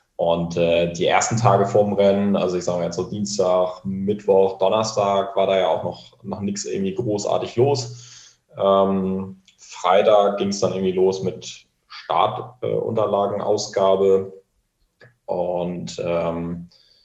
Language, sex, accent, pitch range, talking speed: German, male, German, 95-115 Hz, 135 wpm